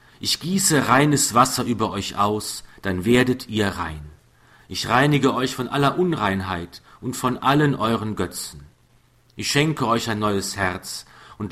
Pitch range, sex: 100-130 Hz, male